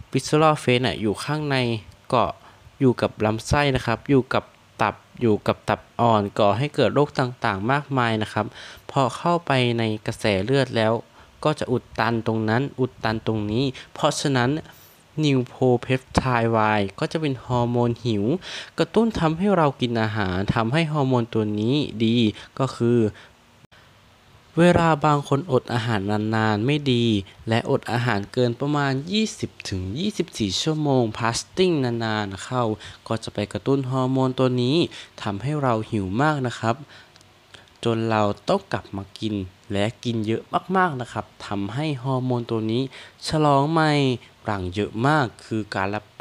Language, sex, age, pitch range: Thai, male, 20-39, 110-135 Hz